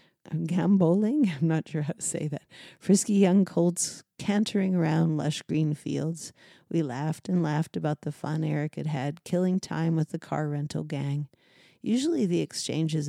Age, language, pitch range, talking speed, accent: 50-69, English, 150-175 Hz, 170 wpm, American